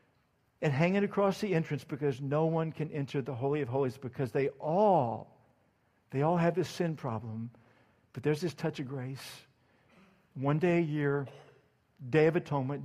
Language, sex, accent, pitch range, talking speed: English, male, American, 140-175 Hz, 170 wpm